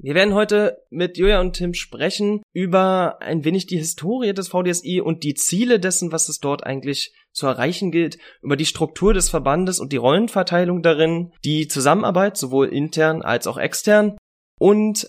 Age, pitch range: 20-39, 130-175 Hz